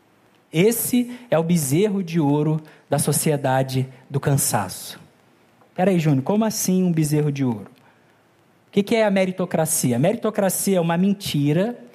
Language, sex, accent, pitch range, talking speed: Polish, male, Brazilian, 155-225 Hz, 140 wpm